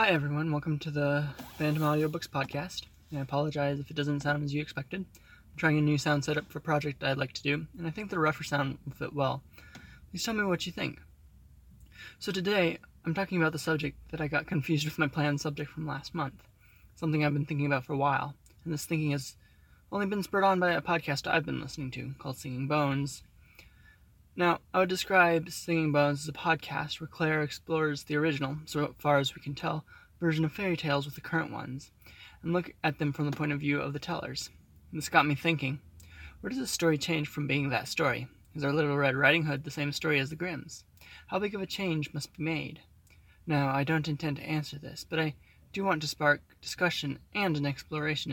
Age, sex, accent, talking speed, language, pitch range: 20-39, male, American, 220 wpm, English, 140-160 Hz